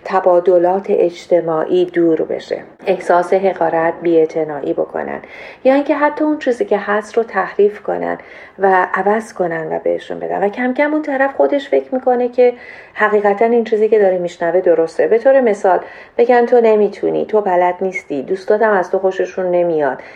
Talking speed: 165 wpm